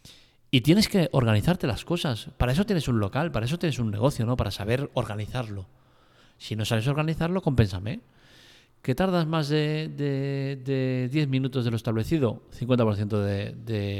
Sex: male